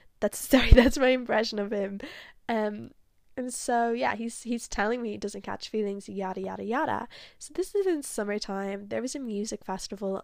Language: English